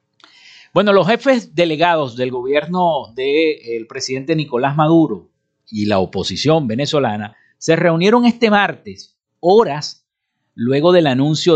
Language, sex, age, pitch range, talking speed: Spanish, male, 50-69, 120-165 Hz, 120 wpm